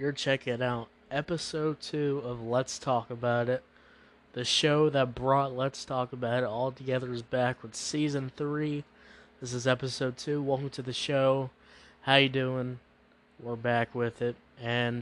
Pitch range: 125-140 Hz